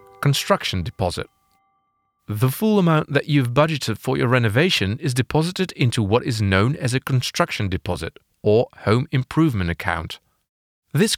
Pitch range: 100-160 Hz